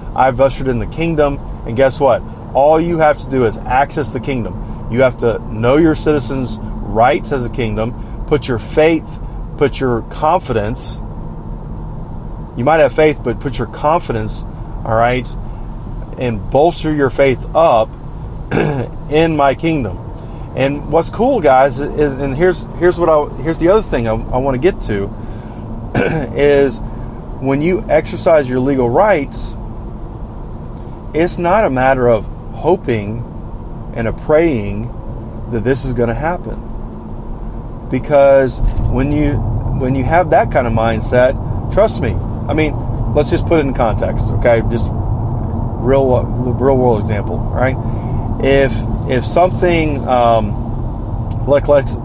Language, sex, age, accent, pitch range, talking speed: English, male, 30-49, American, 115-135 Hz, 145 wpm